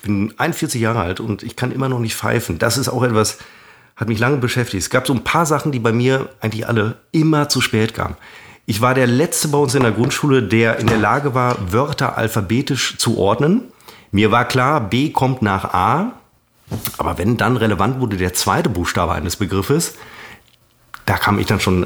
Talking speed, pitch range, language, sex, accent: 205 wpm, 110-145 Hz, German, male, German